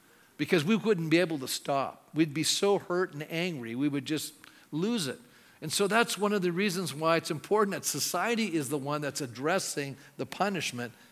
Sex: male